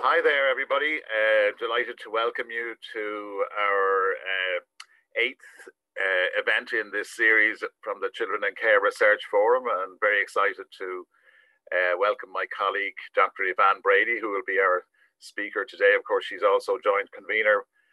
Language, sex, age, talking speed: English, male, 50-69, 155 wpm